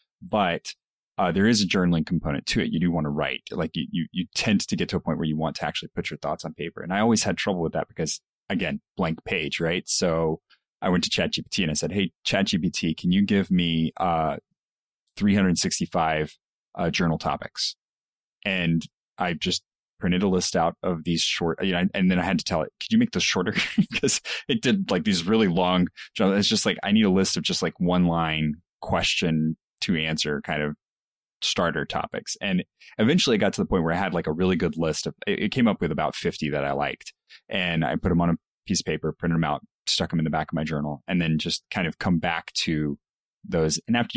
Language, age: English, 30-49